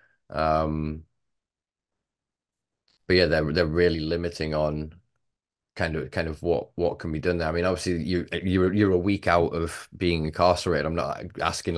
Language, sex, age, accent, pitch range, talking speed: English, male, 20-39, British, 75-90 Hz, 170 wpm